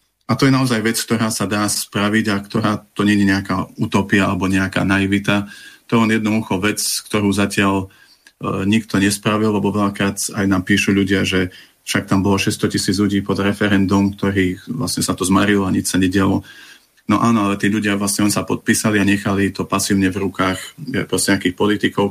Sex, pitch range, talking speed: male, 95-105 Hz, 195 wpm